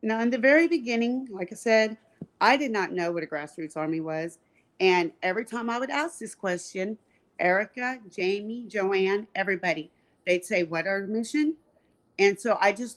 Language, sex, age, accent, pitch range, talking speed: English, female, 40-59, American, 180-235 Hz, 175 wpm